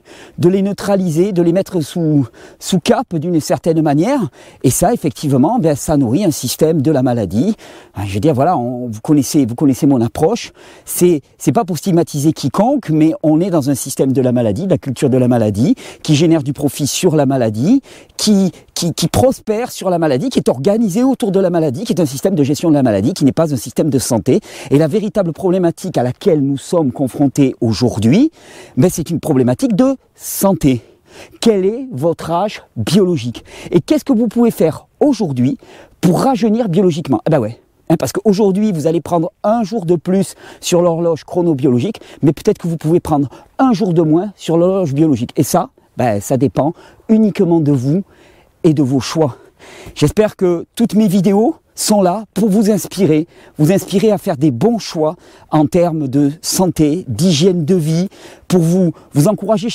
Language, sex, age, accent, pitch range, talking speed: French, male, 40-59, French, 145-200 Hz, 195 wpm